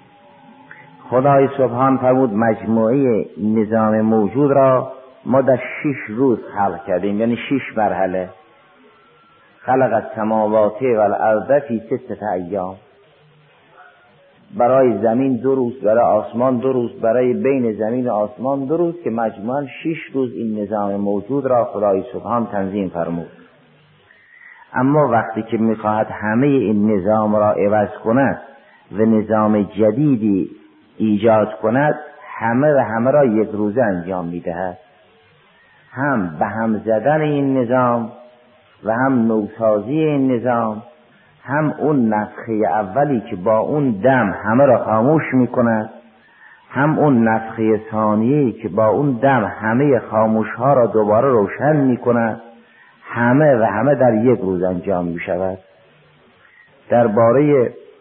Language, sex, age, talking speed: Persian, male, 50-69, 125 wpm